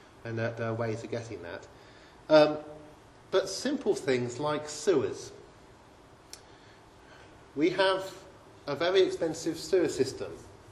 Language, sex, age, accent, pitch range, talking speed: English, male, 40-59, British, 120-150 Hz, 110 wpm